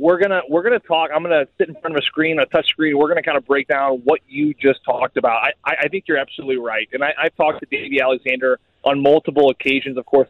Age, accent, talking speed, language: 20-39, American, 280 wpm, English